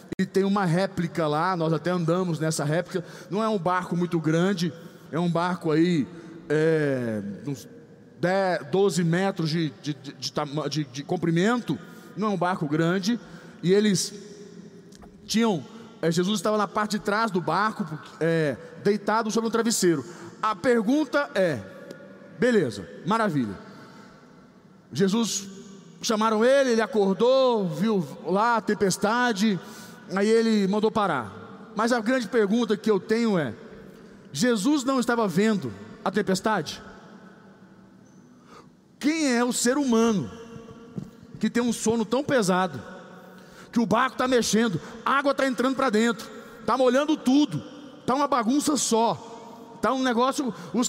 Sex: male